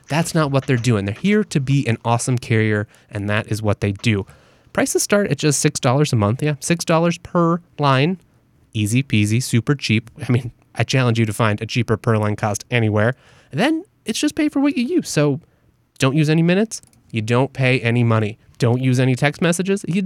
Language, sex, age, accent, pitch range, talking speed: English, male, 20-39, American, 115-150 Hz, 210 wpm